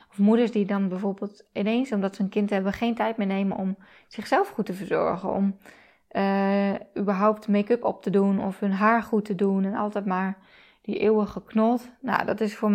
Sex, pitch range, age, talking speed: female, 195-220 Hz, 20-39, 200 wpm